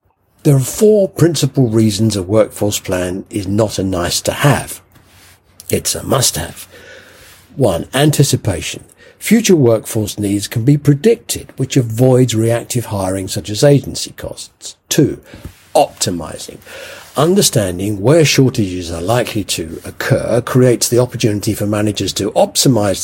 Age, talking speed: 50-69, 130 wpm